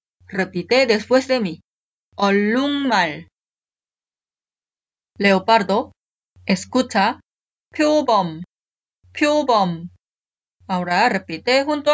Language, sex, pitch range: Korean, female, 185-275 Hz